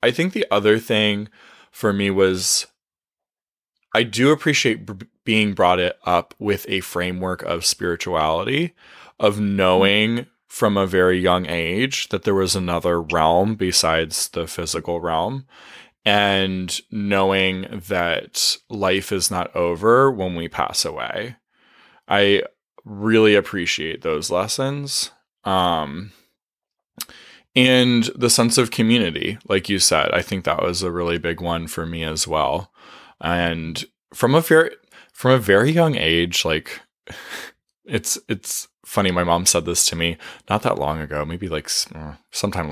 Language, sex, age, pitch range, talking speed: English, male, 20-39, 85-110 Hz, 140 wpm